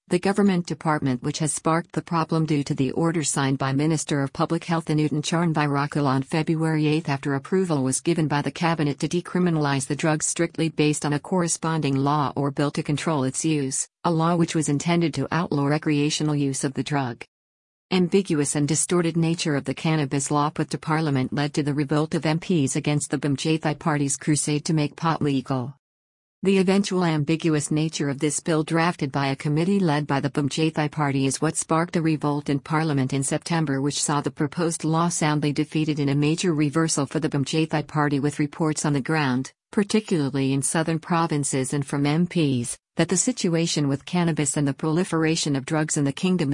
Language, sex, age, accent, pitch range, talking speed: English, female, 50-69, American, 145-160 Hz, 195 wpm